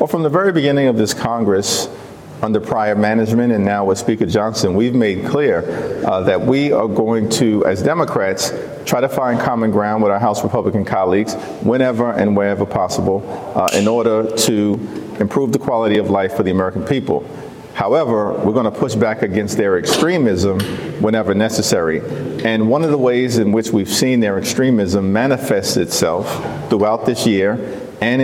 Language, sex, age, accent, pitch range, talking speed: English, male, 50-69, American, 105-130 Hz, 170 wpm